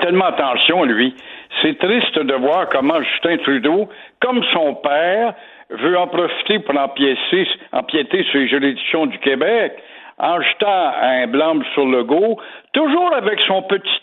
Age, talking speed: 60-79, 150 wpm